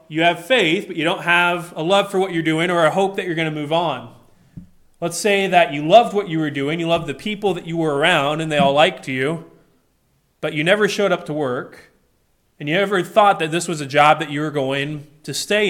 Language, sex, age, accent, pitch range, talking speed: English, male, 20-39, American, 150-185 Hz, 250 wpm